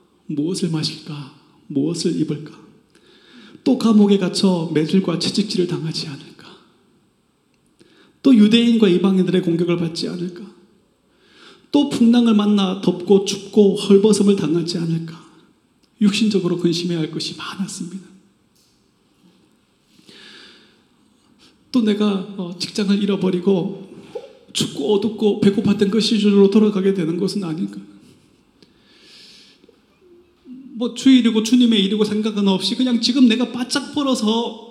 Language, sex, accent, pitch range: Korean, male, native, 175-230 Hz